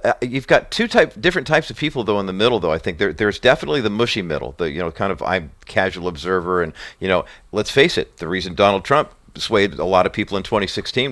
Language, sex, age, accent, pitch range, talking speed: English, male, 50-69, American, 95-115 Hz, 255 wpm